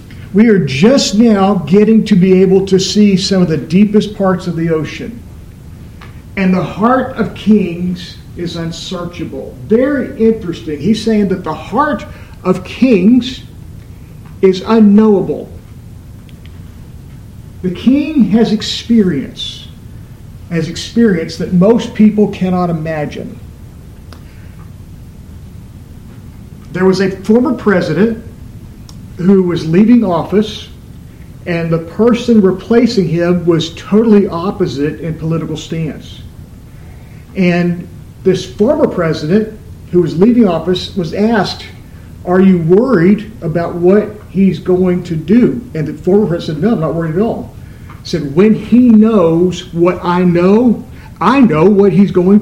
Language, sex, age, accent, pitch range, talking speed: English, male, 50-69, American, 160-210 Hz, 125 wpm